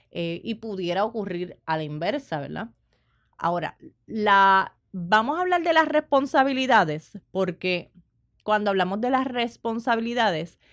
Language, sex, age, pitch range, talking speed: Spanish, female, 20-39, 170-245 Hz, 115 wpm